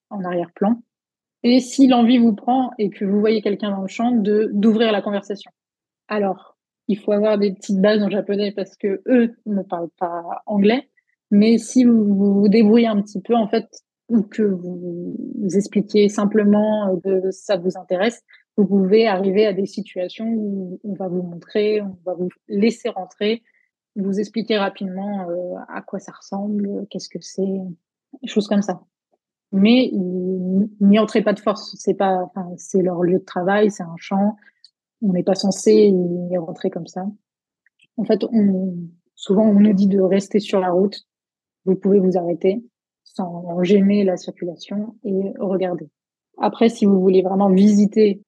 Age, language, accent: 20-39, French, French